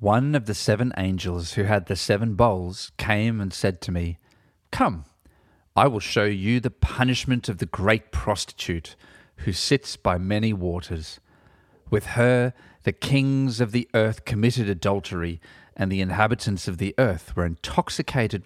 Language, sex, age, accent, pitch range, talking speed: English, male, 40-59, Australian, 90-115 Hz, 155 wpm